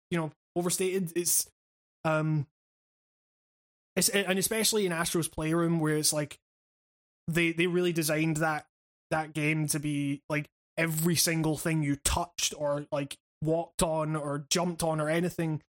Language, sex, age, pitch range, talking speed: English, male, 20-39, 155-180 Hz, 145 wpm